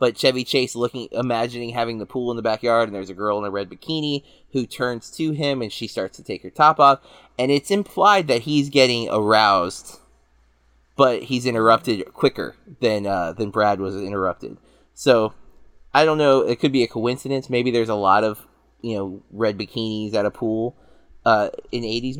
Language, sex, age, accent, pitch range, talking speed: English, male, 20-39, American, 110-140 Hz, 195 wpm